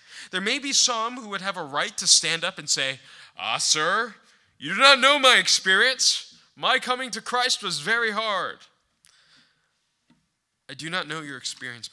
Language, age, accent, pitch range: English, 20-39, American, 165-235 Hz